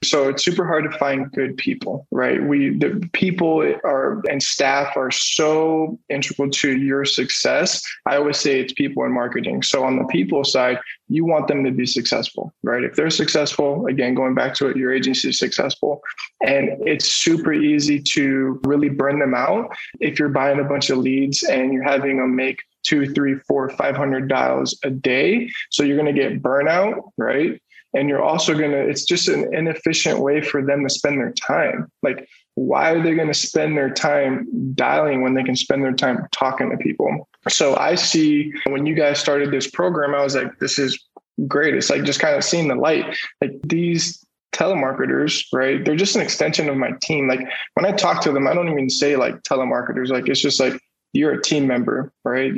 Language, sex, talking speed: English, male, 205 wpm